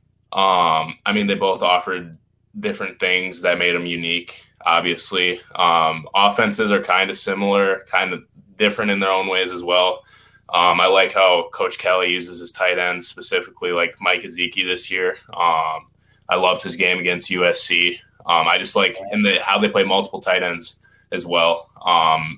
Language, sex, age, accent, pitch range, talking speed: English, male, 20-39, American, 85-100 Hz, 175 wpm